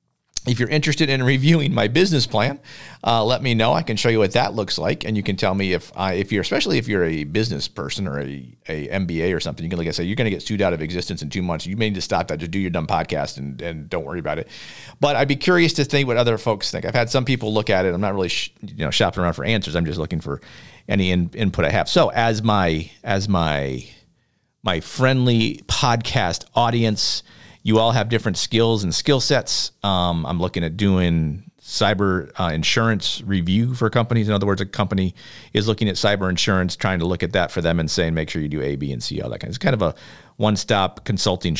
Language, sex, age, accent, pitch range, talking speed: English, male, 40-59, American, 90-115 Hz, 255 wpm